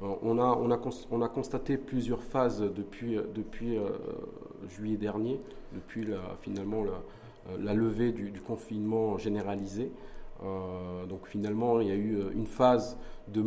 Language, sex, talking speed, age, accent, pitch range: French, male, 135 wpm, 40-59, French, 105-125 Hz